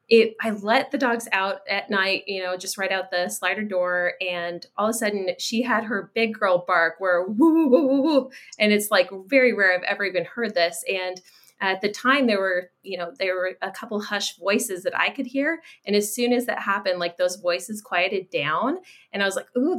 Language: English